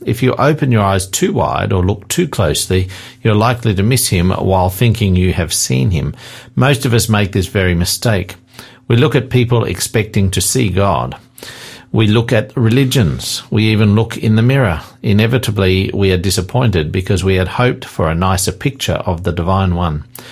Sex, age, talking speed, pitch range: male, 50-69, 185 wpm, 95-125 Hz